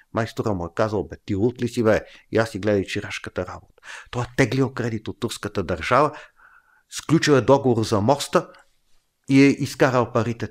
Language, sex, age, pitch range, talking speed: Bulgarian, male, 50-69, 100-130 Hz, 175 wpm